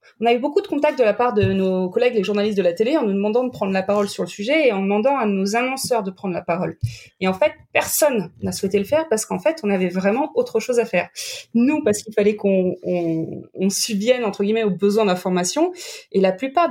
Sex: female